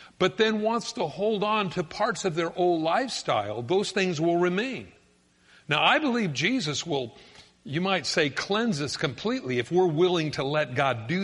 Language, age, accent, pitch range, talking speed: English, 50-69, American, 140-190 Hz, 180 wpm